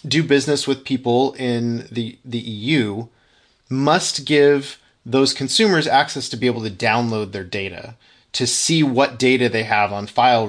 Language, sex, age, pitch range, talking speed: English, male, 30-49, 120-150 Hz, 160 wpm